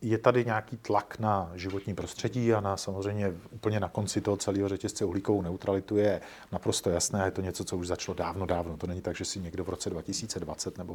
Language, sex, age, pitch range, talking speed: Czech, male, 40-59, 95-115 Hz, 215 wpm